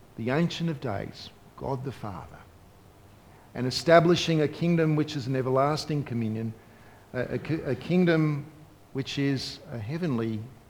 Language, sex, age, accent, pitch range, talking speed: English, male, 50-69, Australian, 100-160 Hz, 135 wpm